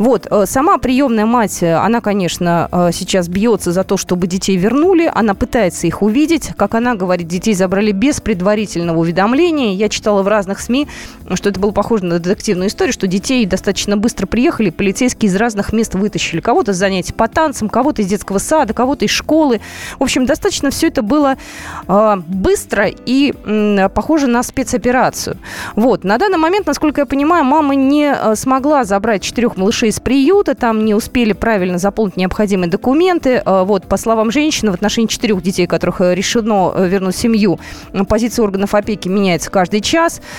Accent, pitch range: native, 195-260 Hz